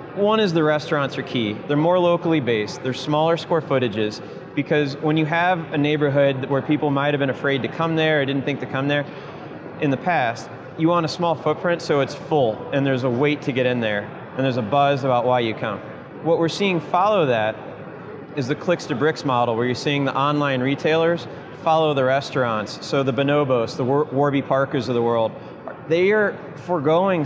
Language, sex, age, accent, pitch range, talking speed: English, male, 30-49, American, 130-160 Hz, 205 wpm